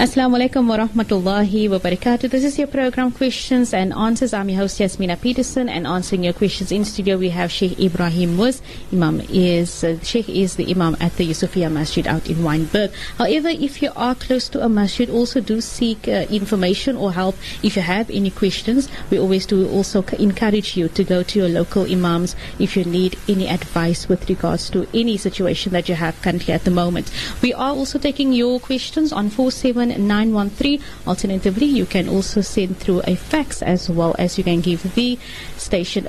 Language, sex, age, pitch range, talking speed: English, female, 30-49, 180-245 Hz, 195 wpm